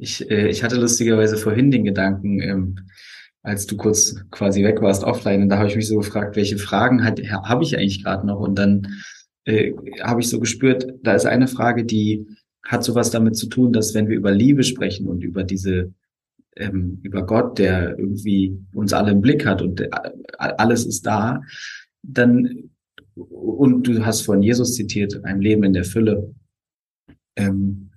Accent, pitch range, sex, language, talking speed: German, 100-130 Hz, male, German, 175 wpm